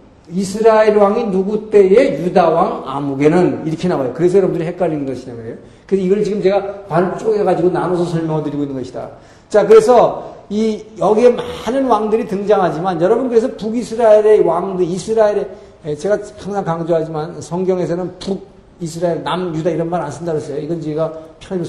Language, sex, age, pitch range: Korean, male, 50-69, 160-215 Hz